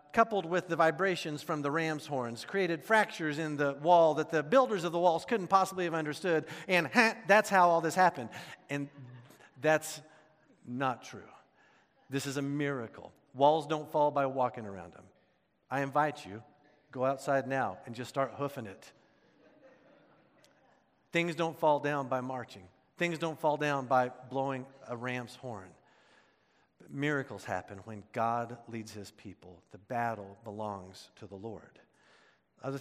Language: English